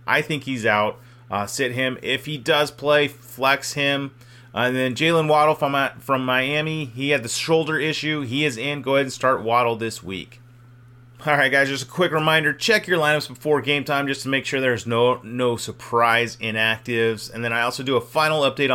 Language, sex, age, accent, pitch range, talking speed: English, male, 30-49, American, 115-140 Hz, 210 wpm